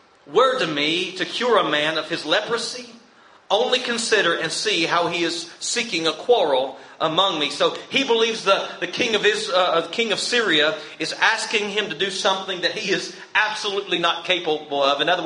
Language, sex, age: English, male, 40-59